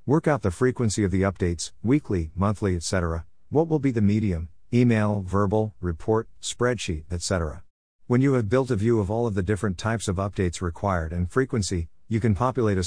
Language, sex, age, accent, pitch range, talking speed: English, male, 50-69, American, 90-115 Hz, 190 wpm